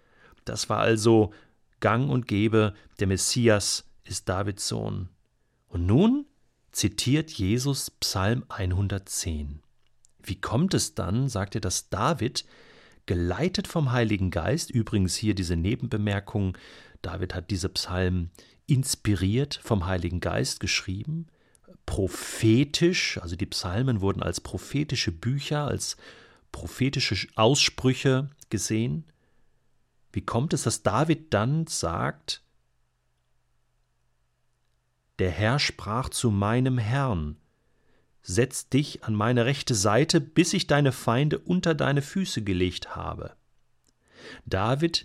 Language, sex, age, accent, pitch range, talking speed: German, male, 40-59, German, 95-140 Hz, 110 wpm